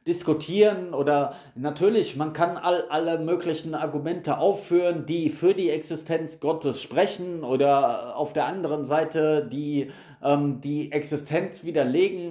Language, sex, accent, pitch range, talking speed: German, male, German, 145-175 Hz, 120 wpm